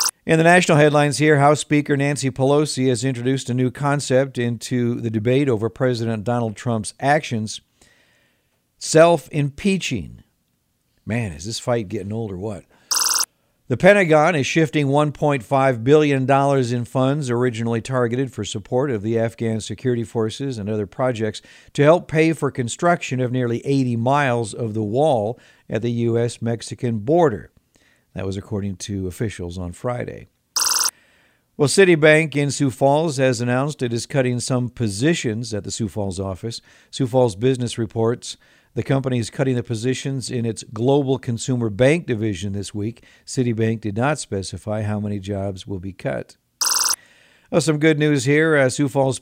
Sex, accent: male, American